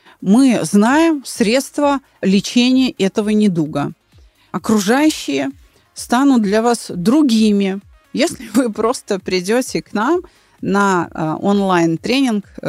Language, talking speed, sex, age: Russian, 90 wpm, female, 30-49